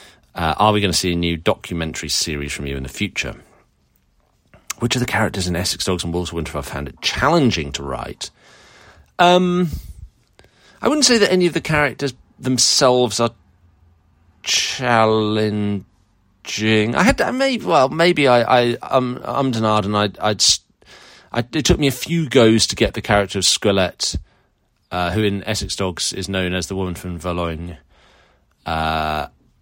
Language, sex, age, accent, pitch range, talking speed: English, male, 30-49, British, 85-115 Hz, 175 wpm